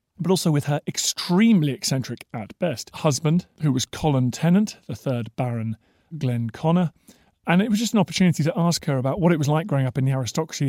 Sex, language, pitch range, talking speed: male, English, 125-165 Hz, 210 wpm